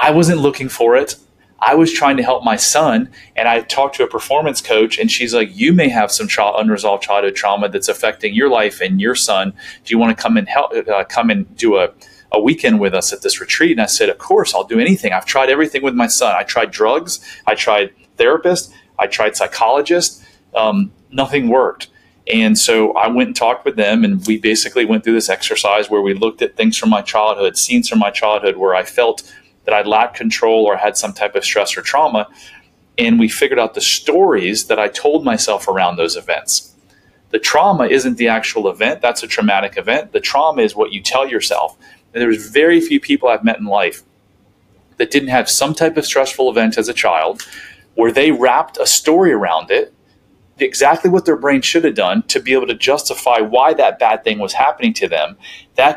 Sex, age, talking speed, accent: male, 30-49, 215 wpm, American